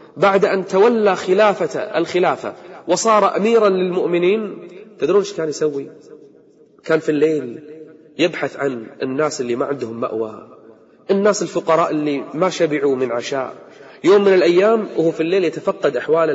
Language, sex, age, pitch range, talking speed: Arabic, male, 30-49, 155-200 Hz, 135 wpm